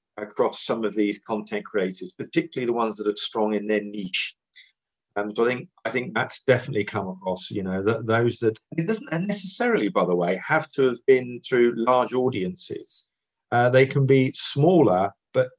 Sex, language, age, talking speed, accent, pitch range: male, English, 40-59, 195 wpm, British, 105-130 Hz